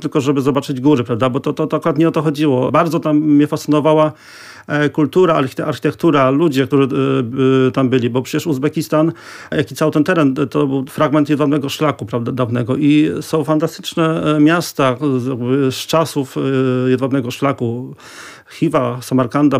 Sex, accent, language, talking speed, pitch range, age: male, native, Polish, 145 wpm, 135-155 Hz, 40-59